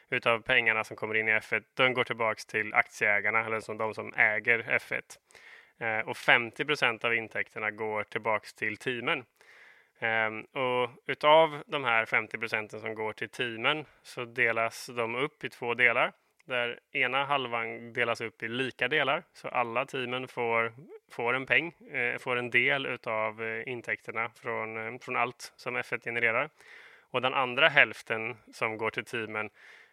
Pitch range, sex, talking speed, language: 110-125 Hz, male, 160 wpm, Swedish